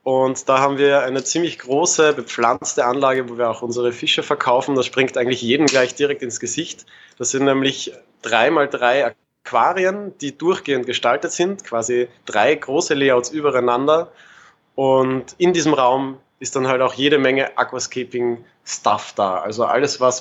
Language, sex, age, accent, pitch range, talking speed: German, male, 20-39, German, 125-145 Hz, 155 wpm